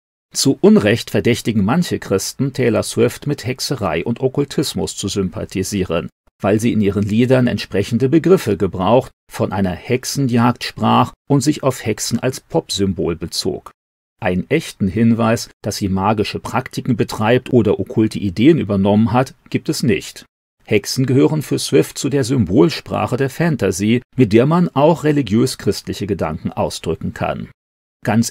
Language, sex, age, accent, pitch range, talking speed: German, male, 40-59, German, 100-130 Hz, 140 wpm